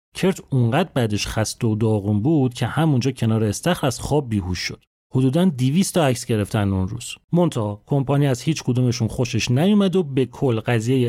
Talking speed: 175 wpm